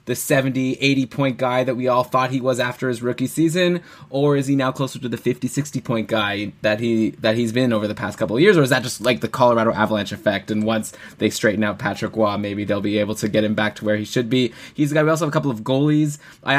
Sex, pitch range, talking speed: male, 120-155 Hz, 280 wpm